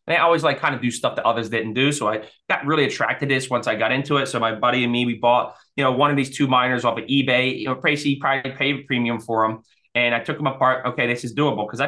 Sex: male